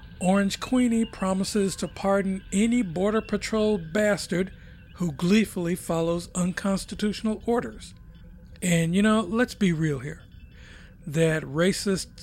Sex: male